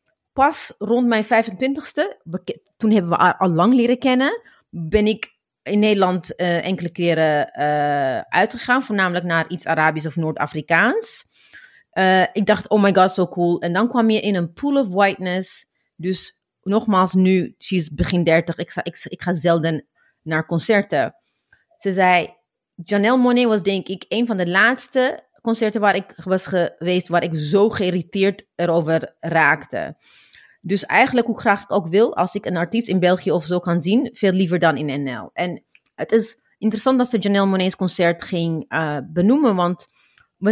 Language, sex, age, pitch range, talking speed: Dutch, female, 30-49, 175-225 Hz, 175 wpm